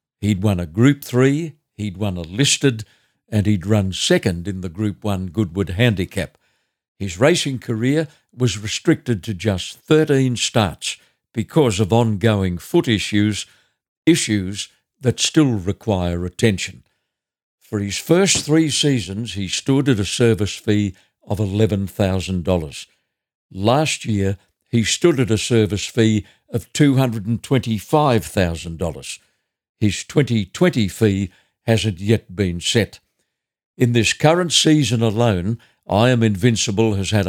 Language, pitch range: English, 100-125 Hz